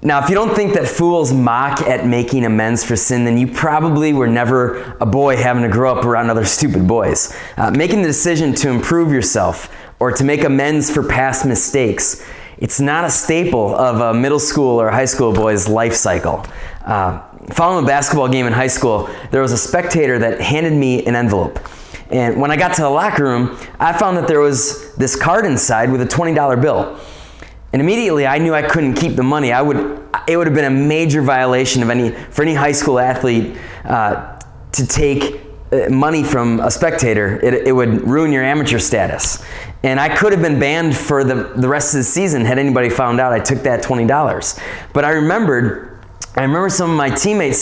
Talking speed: 205 wpm